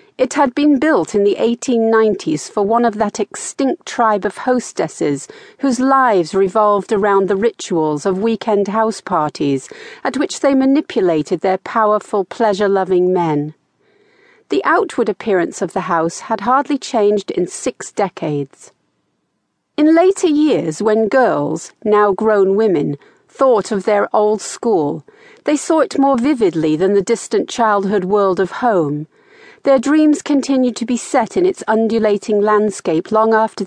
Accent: British